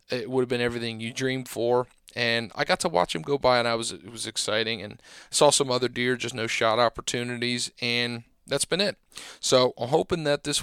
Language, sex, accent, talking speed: English, male, American, 225 wpm